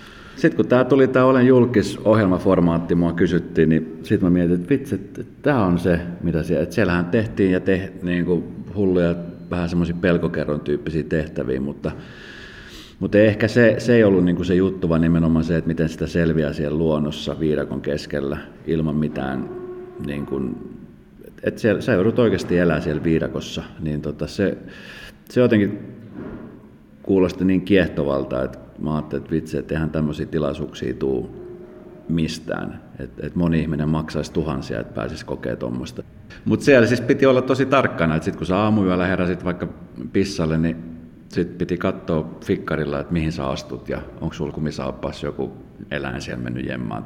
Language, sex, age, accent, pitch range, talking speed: Finnish, male, 40-59, native, 75-95 Hz, 160 wpm